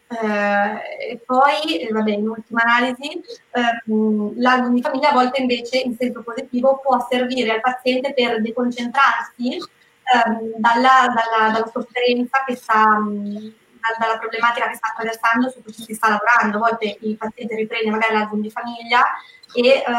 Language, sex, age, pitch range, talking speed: Italian, female, 20-39, 210-240 Hz, 140 wpm